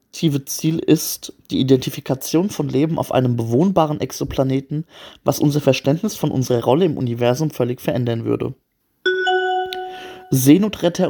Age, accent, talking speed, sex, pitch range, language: 30-49, German, 120 wpm, male, 130-160 Hz, German